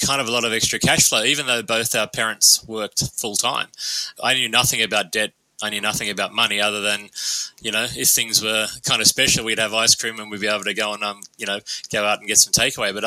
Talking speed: 260 wpm